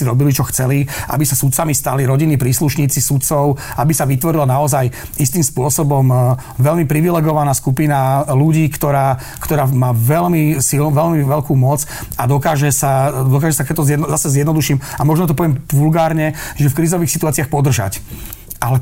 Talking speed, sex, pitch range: 155 wpm, male, 130-155 Hz